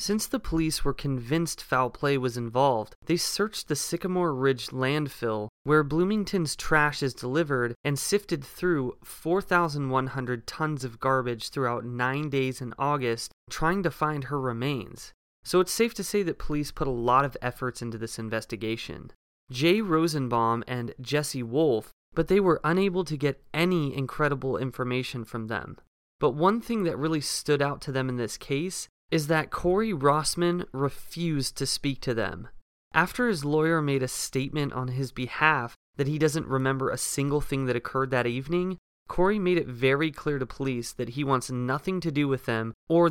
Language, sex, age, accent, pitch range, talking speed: English, male, 20-39, American, 125-160 Hz, 175 wpm